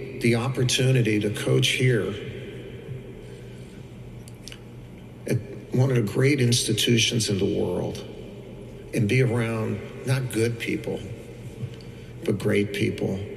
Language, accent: English, American